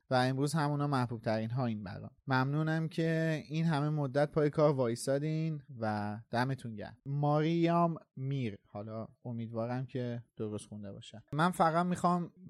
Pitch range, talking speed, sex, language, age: 120-150 Hz, 145 wpm, male, Persian, 30-49